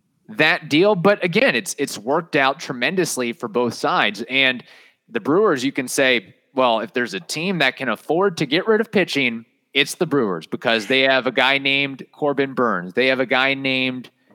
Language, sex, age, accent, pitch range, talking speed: English, male, 30-49, American, 120-145 Hz, 195 wpm